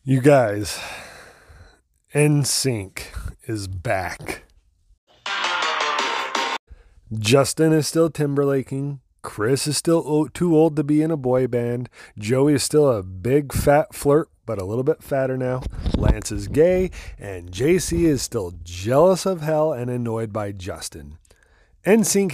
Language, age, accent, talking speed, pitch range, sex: English, 30-49, American, 130 wpm, 105-150 Hz, male